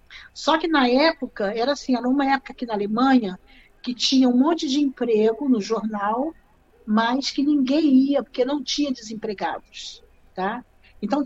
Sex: female